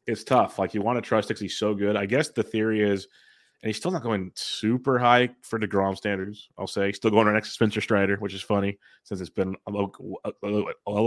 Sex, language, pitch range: male, English, 95-110 Hz